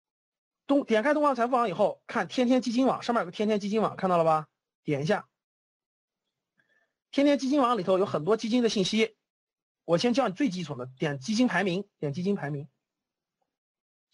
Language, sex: Chinese, male